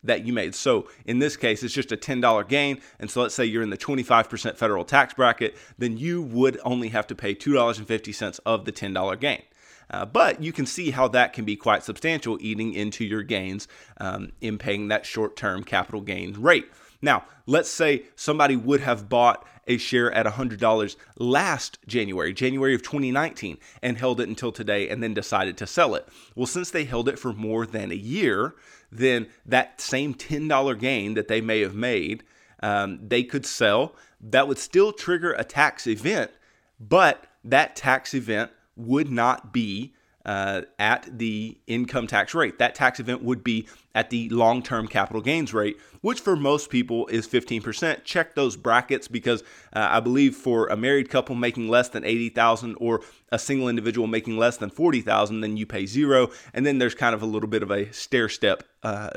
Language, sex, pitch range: English, male, 110-130 Hz